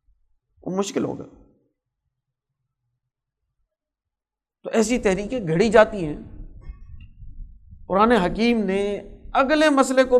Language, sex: Urdu, male